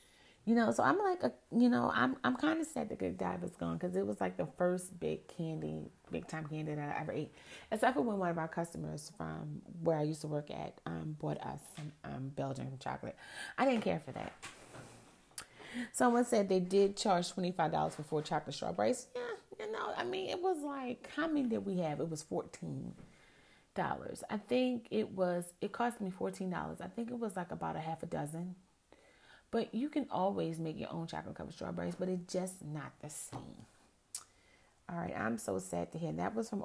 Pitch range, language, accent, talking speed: 145-230 Hz, English, American, 215 wpm